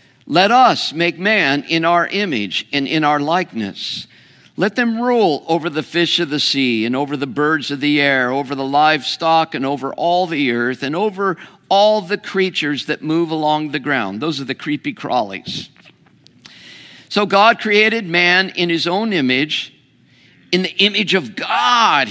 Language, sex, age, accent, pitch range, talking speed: English, male, 50-69, American, 140-195 Hz, 170 wpm